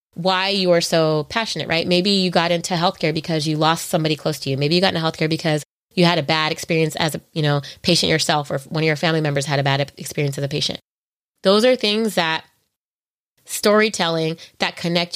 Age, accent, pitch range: 20-39, American, 160-220 Hz